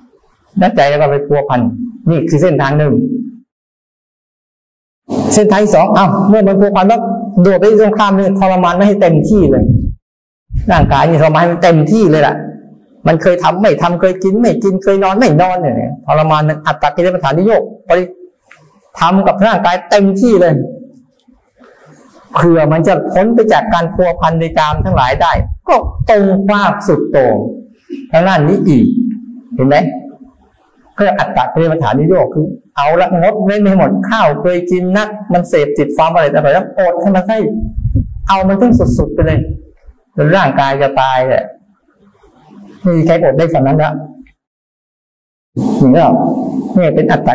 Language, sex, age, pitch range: Thai, male, 50-69, 165-215 Hz